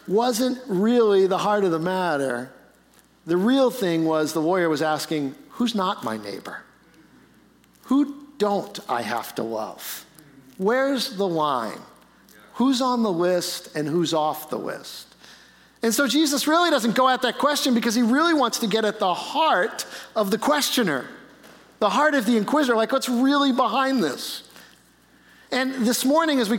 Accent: American